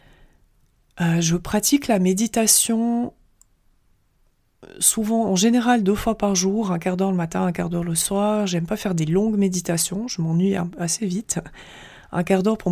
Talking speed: 175 wpm